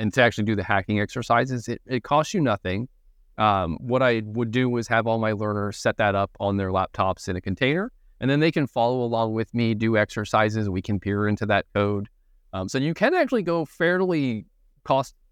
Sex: male